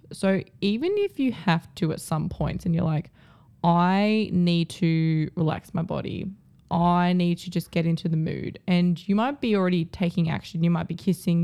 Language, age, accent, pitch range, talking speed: English, 20-39, Australian, 165-180 Hz, 195 wpm